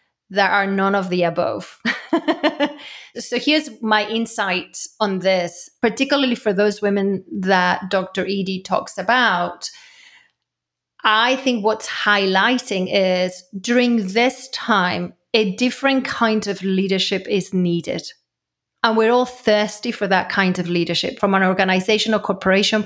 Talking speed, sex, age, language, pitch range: 130 wpm, female, 30-49, English, 185-225 Hz